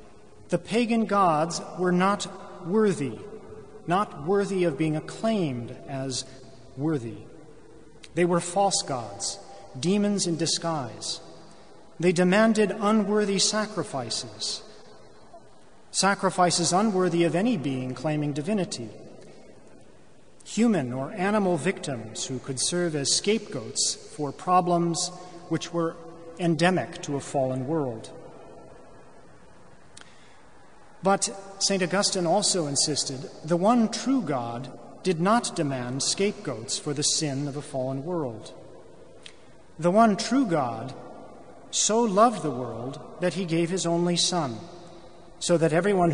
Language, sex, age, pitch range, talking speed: English, male, 40-59, 145-195 Hz, 110 wpm